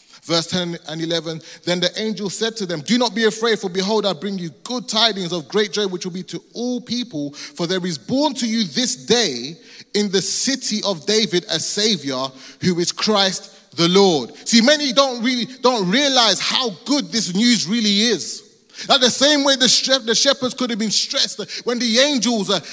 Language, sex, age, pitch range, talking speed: English, male, 30-49, 210-270 Hz, 200 wpm